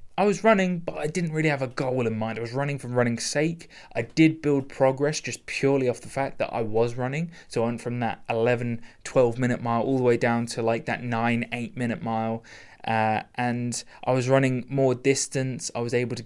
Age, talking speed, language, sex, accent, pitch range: 20-39, 220 wpm, English, male, British, 115-135 Hz